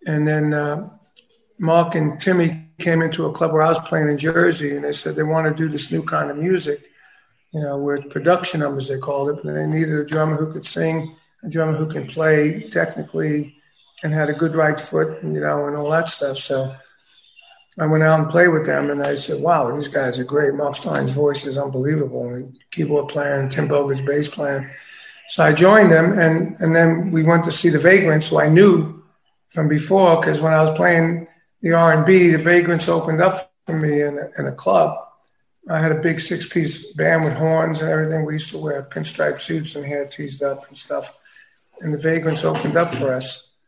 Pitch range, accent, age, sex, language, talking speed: 145-165 Hz, American, 50-69, male, English, 215 wpm